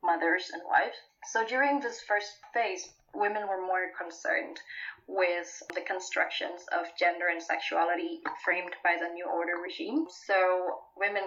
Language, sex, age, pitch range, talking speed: English, female, 20-39, 175-210 Hz, 145 wpm